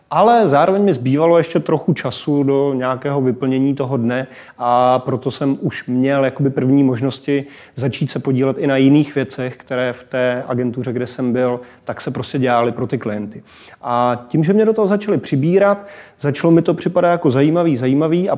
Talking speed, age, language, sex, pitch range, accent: 185 wpm, 30-49, Czech, male, 125-145 Hz, native